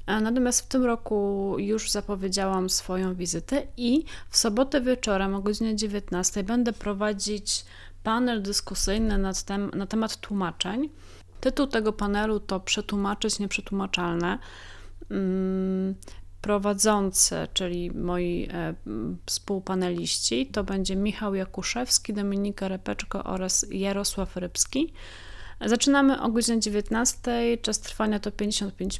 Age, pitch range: 30-49, 190-225 Hz